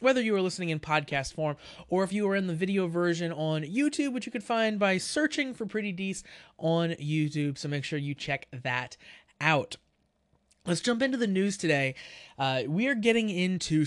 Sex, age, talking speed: male, 20-39, 200 wpm